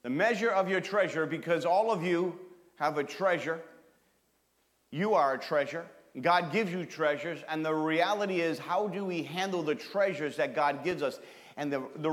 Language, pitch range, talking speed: English, 155-200 Hz, 185 wpm